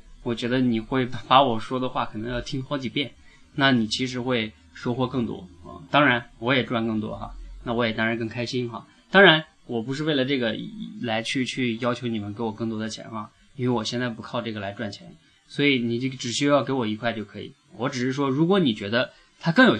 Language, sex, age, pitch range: Chinese, male, 20-39, 115-135 Hz